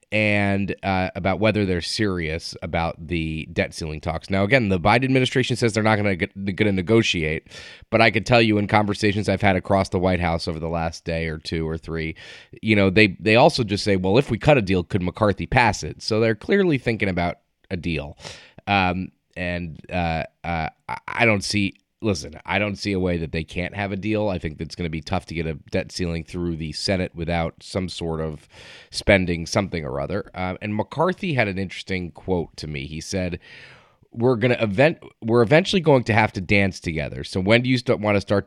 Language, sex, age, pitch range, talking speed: English, male, 30-49, 85-105 Hz, 215 wpm